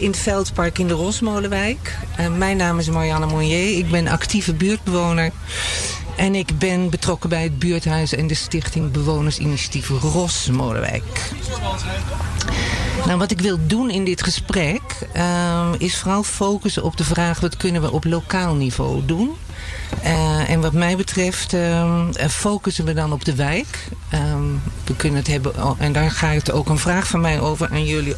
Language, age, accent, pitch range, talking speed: Dutch, 50-69, Dutch, 140-175 Hz, 165 wpm